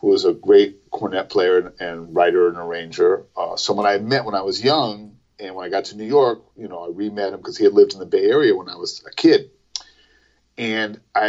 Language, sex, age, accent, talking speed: English, male, 40-59, American, 245 wpm